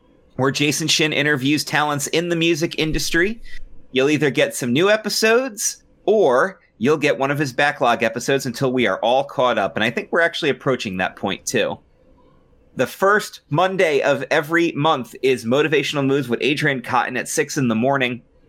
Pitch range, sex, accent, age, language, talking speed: 115-160 Hz, male, American, 30-49, English, 180 wpm